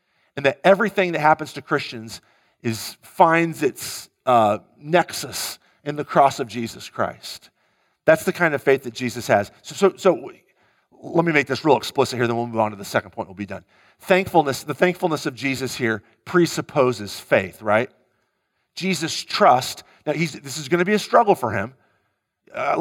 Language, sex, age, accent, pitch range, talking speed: English, male, 40-59, American, 120-160 Hz, 185 wpm